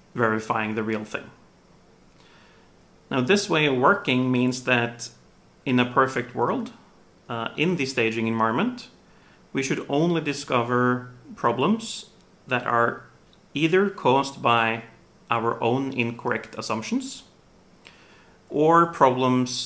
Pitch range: 115-135 Hz